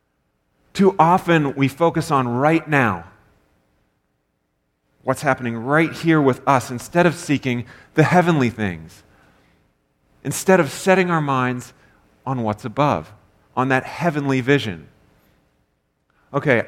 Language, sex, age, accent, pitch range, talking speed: English, male, 30-49, American, 120-155 Hz, 115 wpm